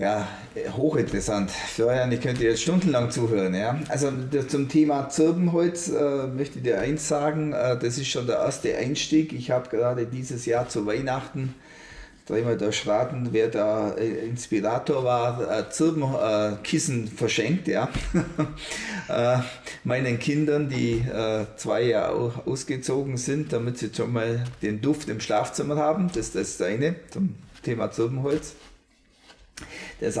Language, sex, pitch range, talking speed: German, male, 115-155 Hz, 145 wpm